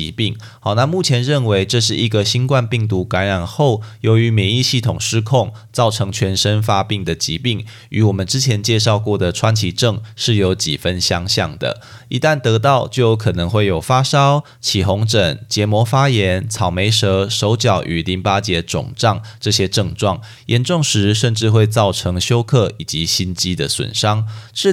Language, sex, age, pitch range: Chinese, male, 20-39, 100-120 Hz